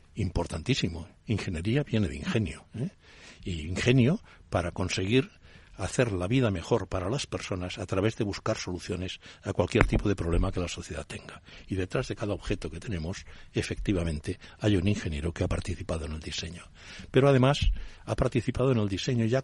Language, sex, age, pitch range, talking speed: Spanish, male, 60-79, 90-120 Hz, 175 wpm